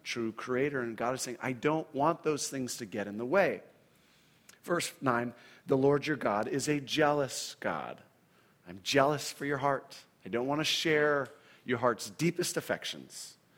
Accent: American